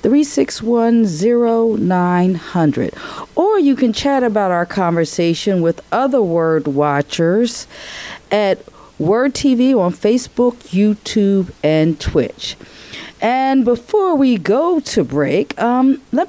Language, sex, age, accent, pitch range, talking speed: English, female, 40-59, American, 150-235 Hz, 120 wpm